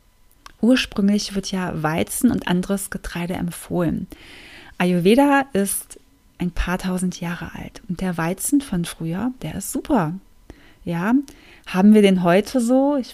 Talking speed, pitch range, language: 135 wpm, 175-210 Hz, German